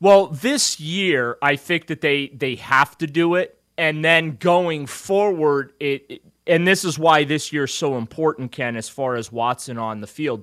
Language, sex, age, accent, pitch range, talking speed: English, male, 30-49, American, 130-165 Hz, 195 wpm